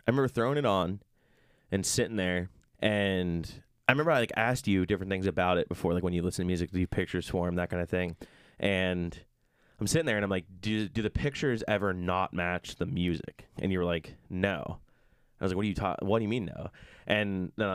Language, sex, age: English, male, 20-39